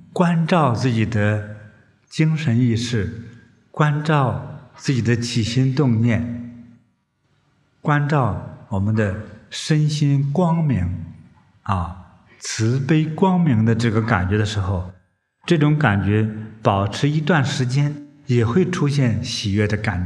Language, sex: Chinese, male